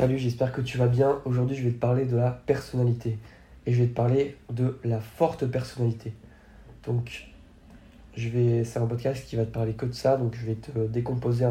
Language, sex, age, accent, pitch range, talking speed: French, male, 20-39, French, 115-130 Hz, 215 wpm